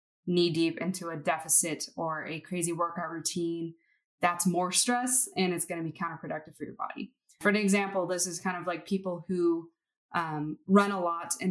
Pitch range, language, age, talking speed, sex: 165-200 Hz, English, 20-39, 195 wpm, female